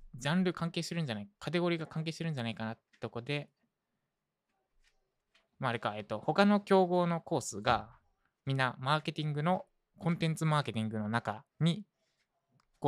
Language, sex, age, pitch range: Japanese, male, 20-39, 110-155 Hz